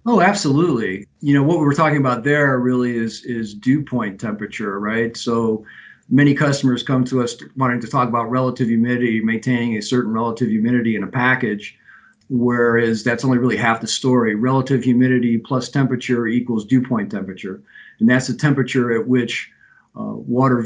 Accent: American